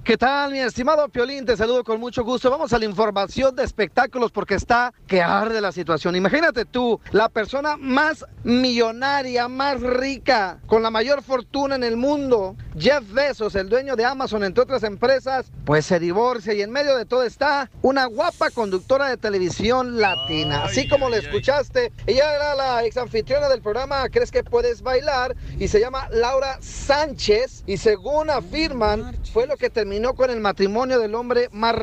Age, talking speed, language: 40-59, 175 wpm, Spanish